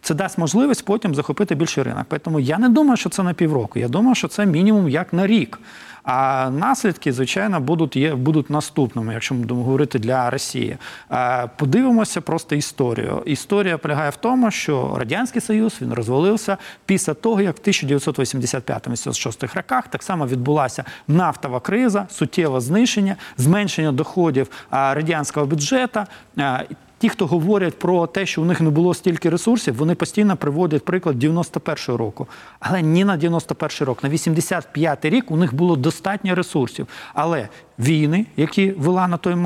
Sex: male